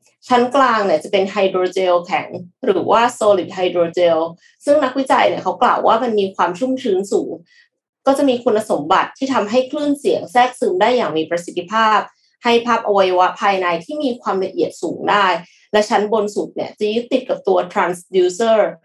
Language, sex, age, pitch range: Thai, female, 20-39, 185-260 Hz